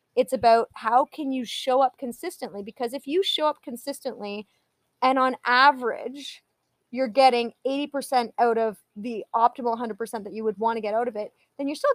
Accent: American